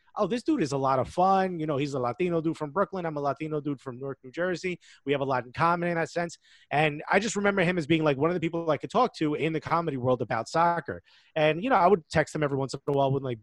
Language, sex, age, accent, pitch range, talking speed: English, male, 30-49, American, 135-170 Hz, 310 wpm